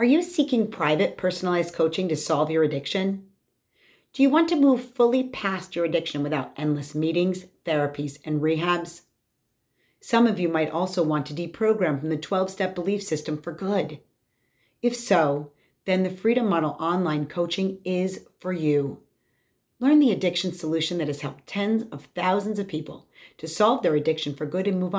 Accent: American